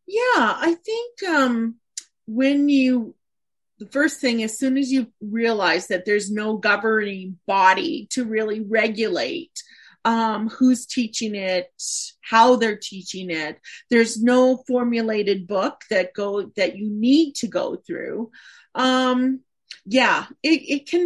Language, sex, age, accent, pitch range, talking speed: English, female, 40-59, American, 225-300 Hz, 135 wpm